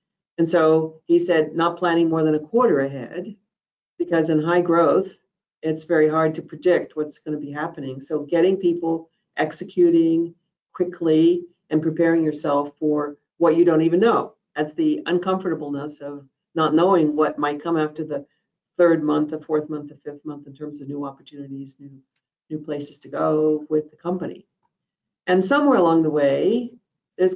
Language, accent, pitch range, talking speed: English, American, 150-175 Hz, 165 wpm